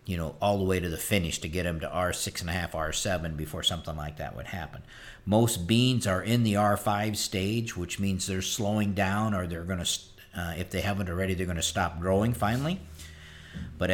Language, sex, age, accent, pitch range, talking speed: English, male, 50-69, American, 85-105 Hz, 230 wpm